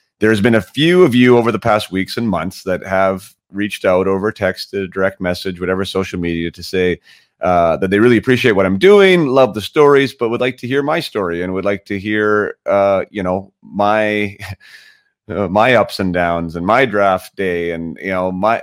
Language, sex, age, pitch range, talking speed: English, male, 30-49, 85-105 Hz, 215 wpm